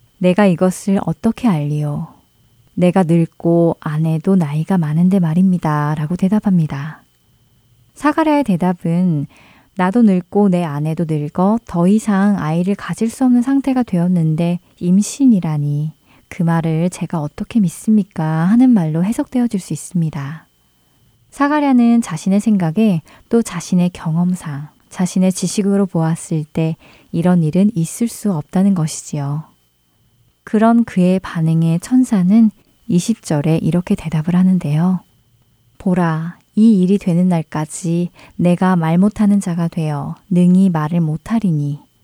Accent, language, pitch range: native, Korean, 155-200 Hz